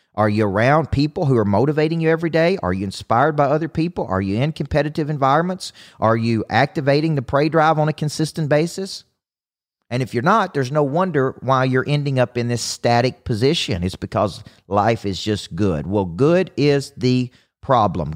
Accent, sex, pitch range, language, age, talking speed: American, male, 110-145 Hz, English, 40-59, 190 wpm